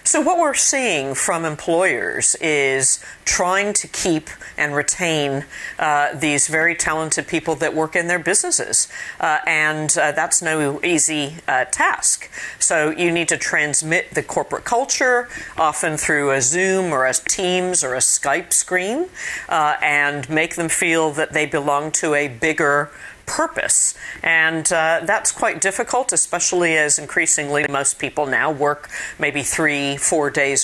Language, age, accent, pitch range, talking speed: English, 50-69, American, 150-210 Hz, 150 wpm